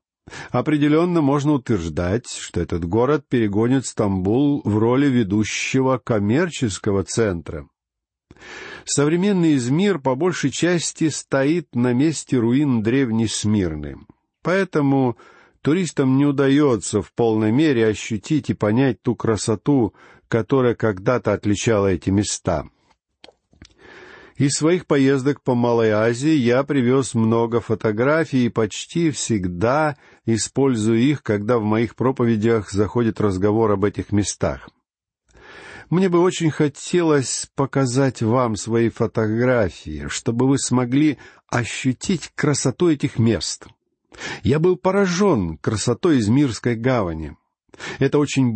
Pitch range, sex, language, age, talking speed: 110-145 Hz, male, Russian, 50-69, 110 wpm